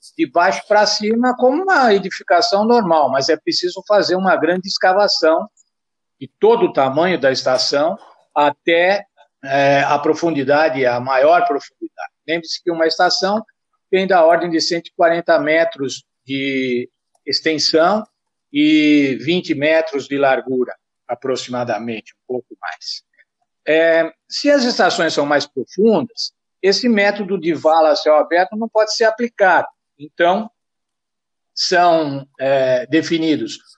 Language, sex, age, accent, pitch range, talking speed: Portuguese, male, 60-79, Brazilian, 155-220 Hz, 120 wpm